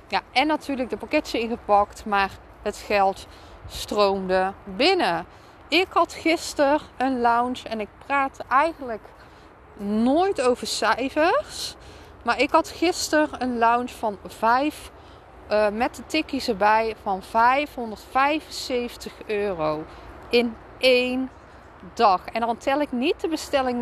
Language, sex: Dutch, female